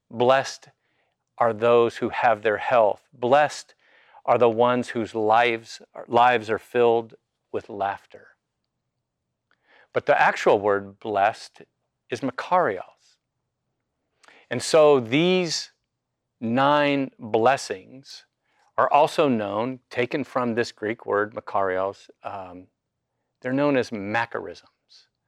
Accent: American